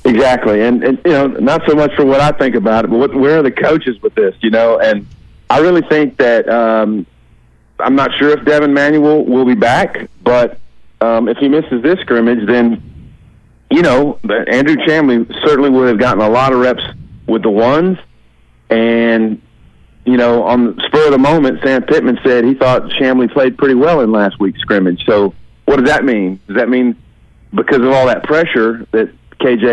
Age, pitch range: 40-59, 115-140 Hz